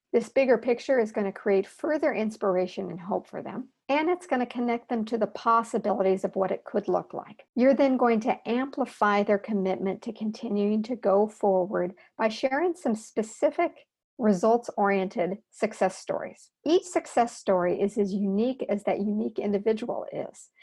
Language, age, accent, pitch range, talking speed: English, 50-69, American, 205-250 Hz, 170 wpm